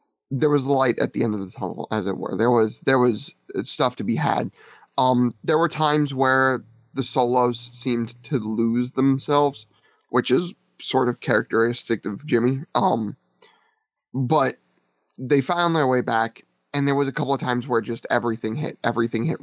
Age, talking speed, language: 30-49, 180 wpm, English